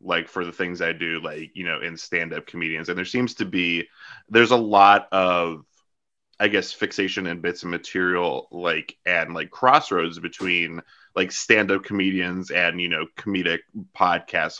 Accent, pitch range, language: American, 85-100 Hz, English